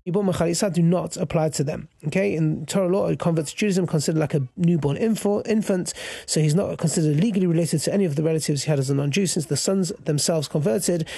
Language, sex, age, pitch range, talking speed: English, male, 30-49, 160-195 Hz, 205 wpm